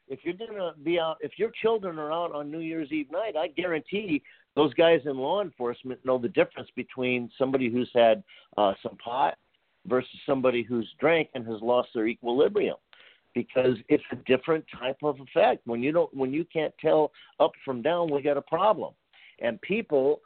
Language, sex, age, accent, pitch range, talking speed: English, male, 50-69, American, 115-160 Hz, 195 wpm